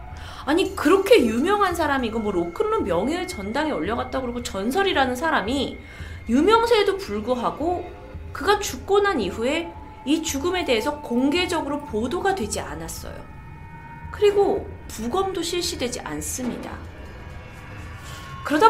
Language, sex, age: Korean, female, 30-49